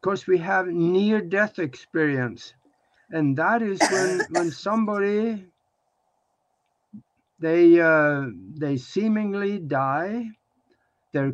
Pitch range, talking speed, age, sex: 150-200 Hz, 90 wpm, 60-79, male